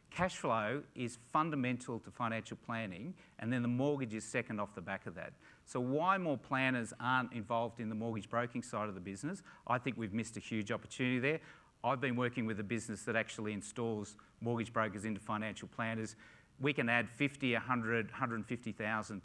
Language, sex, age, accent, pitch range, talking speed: English, male, 40-59, Australian, 105-130 Hz, 185 wpm